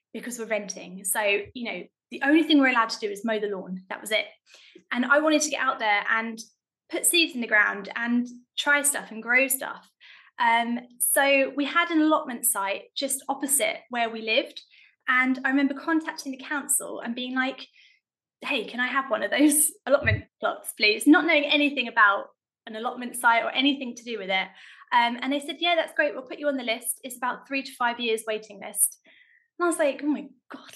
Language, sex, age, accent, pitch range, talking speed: English, female, 20-39, British, 230-300 Hz, 215 wpm